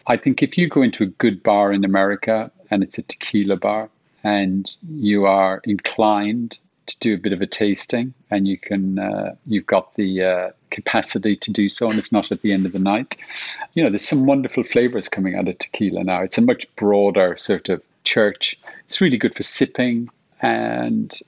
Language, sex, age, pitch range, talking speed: English, male, 40-59, 100-115 Hz, 205 wpm